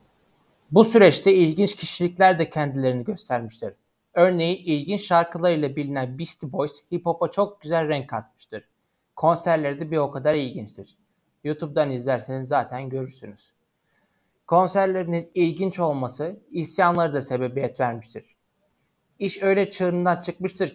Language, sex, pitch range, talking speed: Turkish, male, 145-180 Hz, 115 wpm